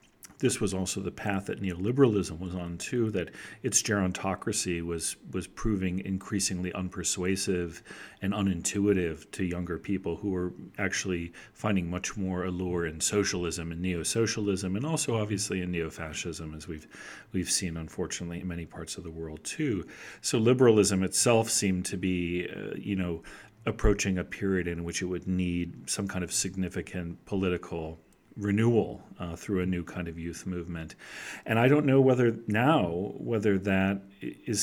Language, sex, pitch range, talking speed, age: English, male, 85-105 Hz, 160 wpm, 40-59